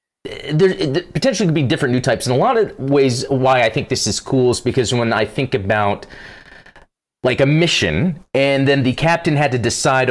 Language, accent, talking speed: English, American, 210 wpm